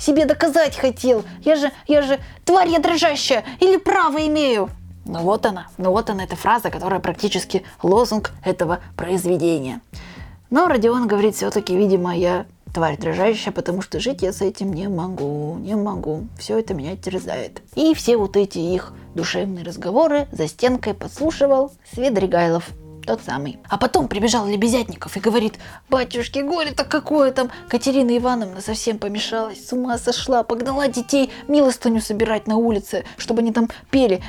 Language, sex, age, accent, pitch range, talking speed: Russian, female, 20-39, native, 185-265 Hz, 150 wpm